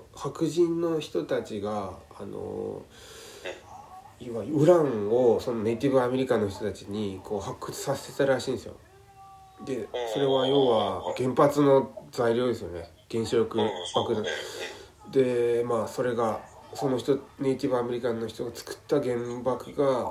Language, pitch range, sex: Japanese, 110-155 Hz, male